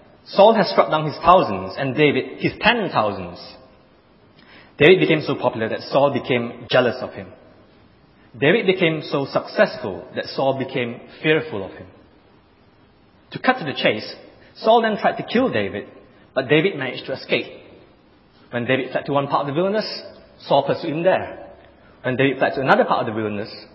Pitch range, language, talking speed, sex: 115-165 Hz, English, 175 wpm, male